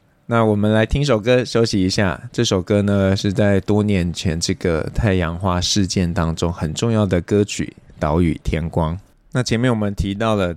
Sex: male